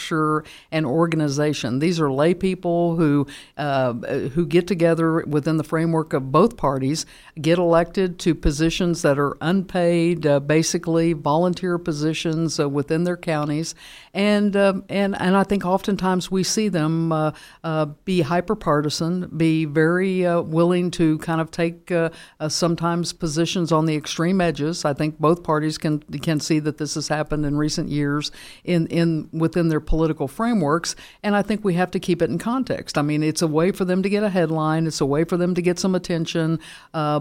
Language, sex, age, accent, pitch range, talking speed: English, female, 60-79, American, 155-175 Hz, 185 wpm